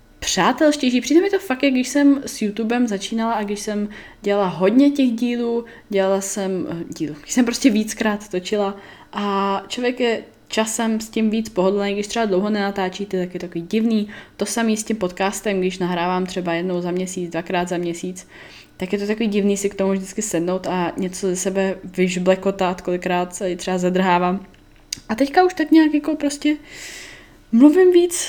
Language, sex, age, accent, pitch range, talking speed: Czech, female, 10-29, native, 180-230 Hz, 185 wpm